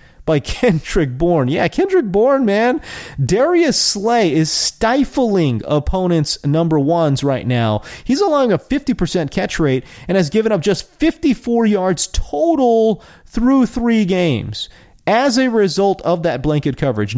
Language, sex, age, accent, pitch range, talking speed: English, male, 30-49, American, 150-240 Hz, 140 wpm